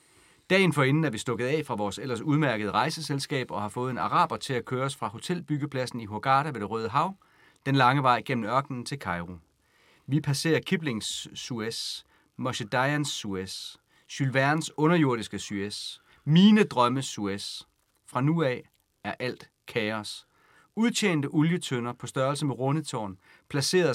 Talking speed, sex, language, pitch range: 155 wpm, male, Danish, 110-150 Hz